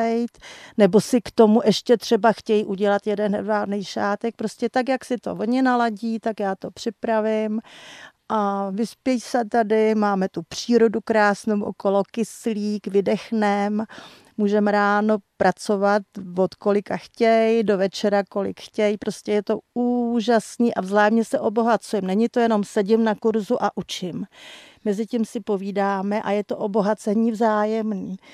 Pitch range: 210-240 Hz